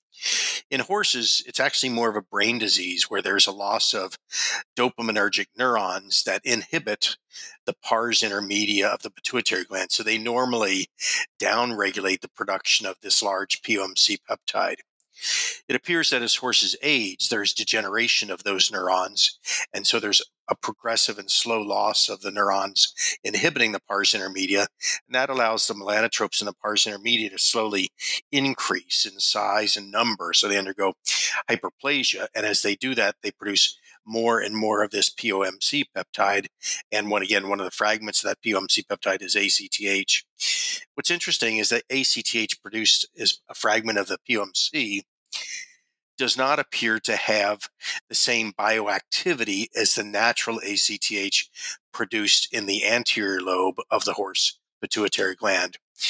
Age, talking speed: 50-69, 155 wpm